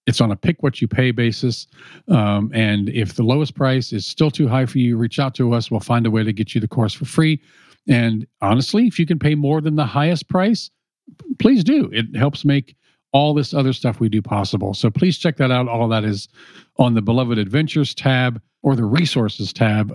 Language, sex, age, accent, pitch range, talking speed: English, male, 50-69, American, 110-155 Hz, 215 wpm